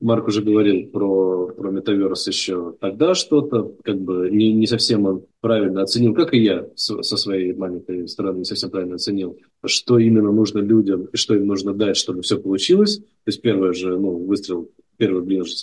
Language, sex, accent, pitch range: Russian, male, native, 100-120 Hz